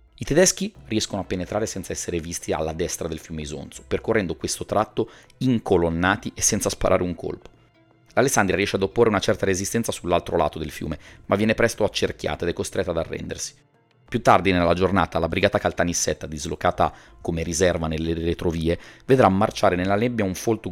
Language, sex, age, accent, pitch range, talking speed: Italian, male, 30-49, native, 85-105 Hz, 175 wpm